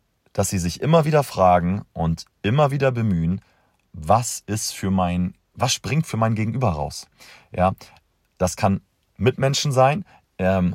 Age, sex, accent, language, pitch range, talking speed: 40-59, male, German, German, 95-130 Hz, 125 wpm